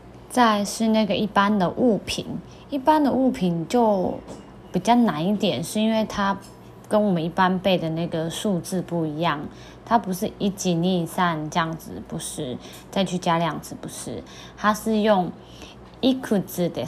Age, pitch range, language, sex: 20-39, 170-215 Hz, Chinese, female